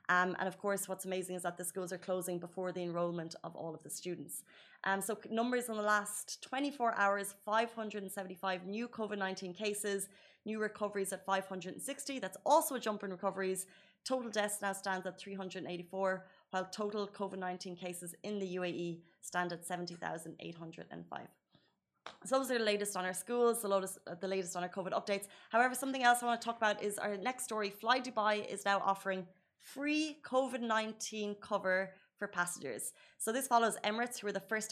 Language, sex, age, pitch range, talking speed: Arabic, female, 30-49, 185-220 Hz, 180 wpm